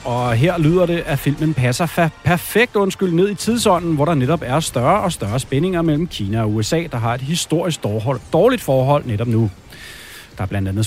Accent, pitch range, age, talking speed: native, 120-165 Hz, 30-49, 205 wpm